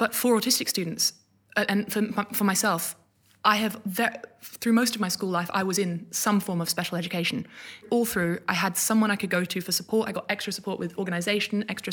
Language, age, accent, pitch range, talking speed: English, 20-39, British, 180-215 Hz, 215 wpm